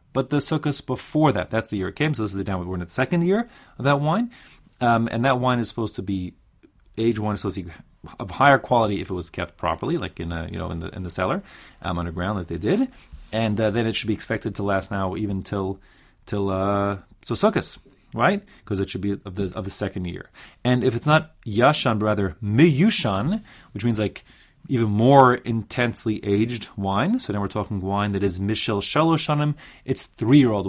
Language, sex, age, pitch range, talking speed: English, male, 30-49, 95-125 Hz, 225 wpm